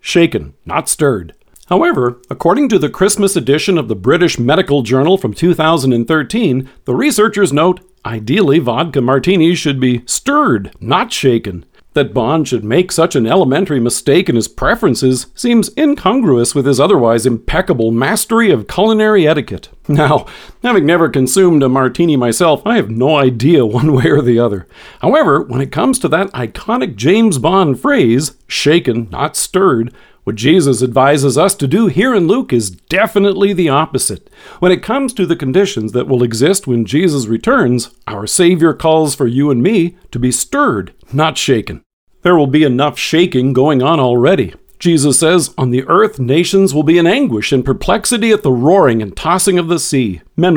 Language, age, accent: English, 50-69, American